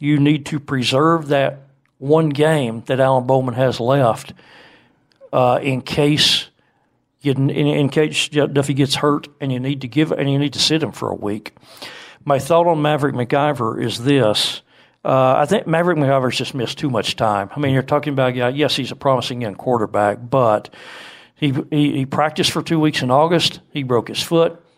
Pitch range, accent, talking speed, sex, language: 125-150 Hz, American, 195 wpm, male, English